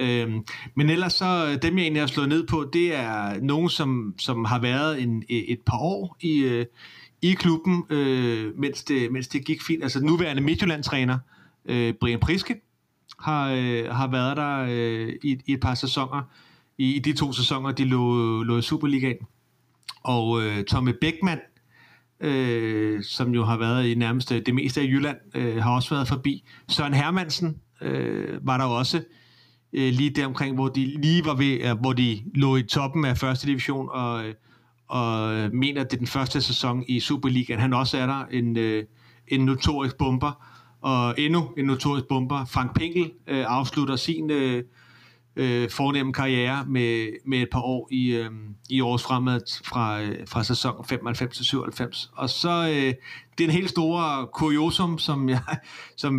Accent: native